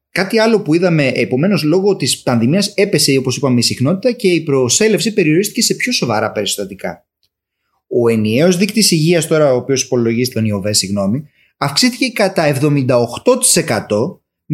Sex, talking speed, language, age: male, 145 wpm, Greek, 30-49